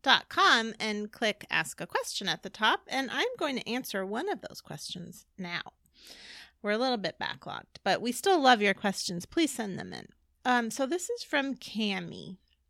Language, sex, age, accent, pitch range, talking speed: English, female, 30-49, American, 185-245 Hz, 195 wpm